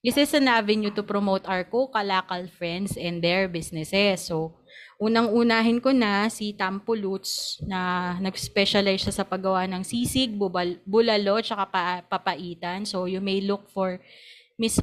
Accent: native